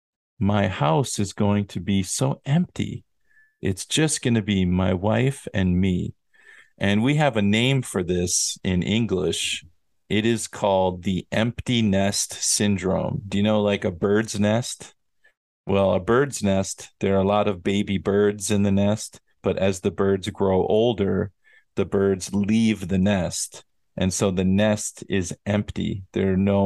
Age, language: 40-59, English